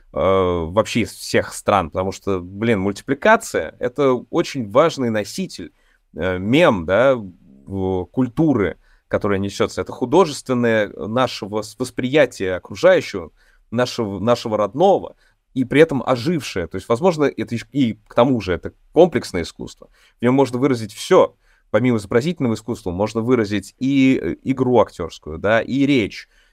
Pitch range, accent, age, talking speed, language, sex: 105-130 Hz, native, 20-39, 130 wpm, Russian, male